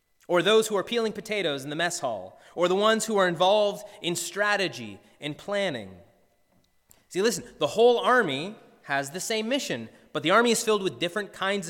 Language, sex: English, male